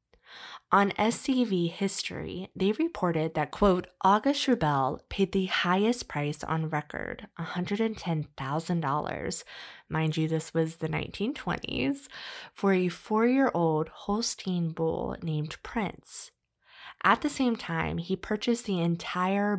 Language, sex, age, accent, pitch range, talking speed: English, female, 20-39, American, 160-205 Hz, 120 wpm